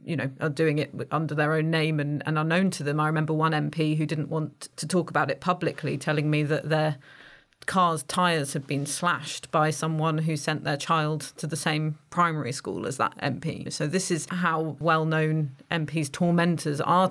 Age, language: 30-49, English